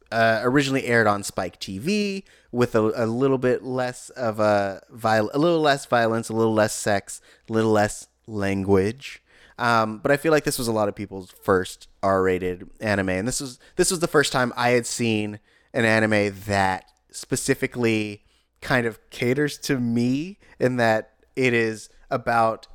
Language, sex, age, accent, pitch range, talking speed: English, male, 30-49, American, 105-125 Hz, 175 wpm